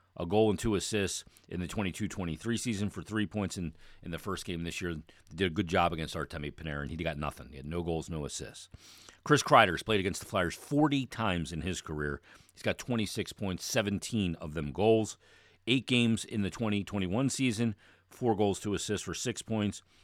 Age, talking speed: 40-59, 210 wpm